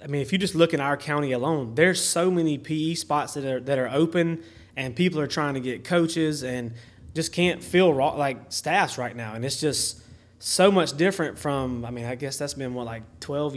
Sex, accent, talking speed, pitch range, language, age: male, American, 230 wpm, 125-155 Hz, English, 20-39